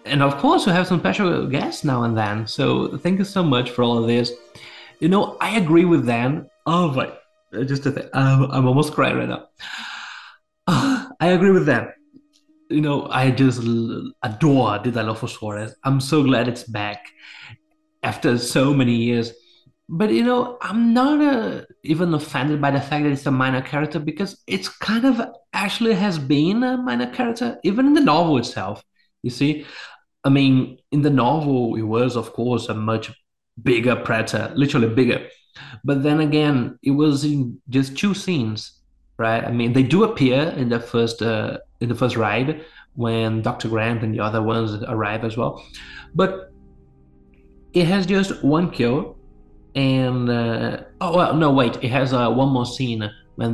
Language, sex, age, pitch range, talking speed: English, male, 20-39, 115-155 Hz, 180 wpm